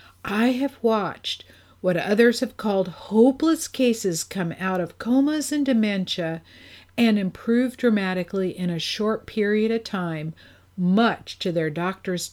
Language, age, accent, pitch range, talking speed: English, 50-69, American, 170-225 Hz, 135 wpm